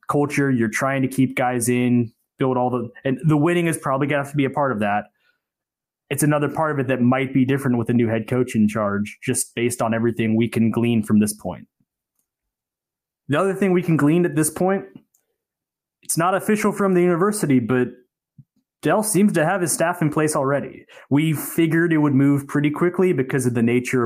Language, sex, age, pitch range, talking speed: English, male, 20-39, 125-155 Hz, 215 wpm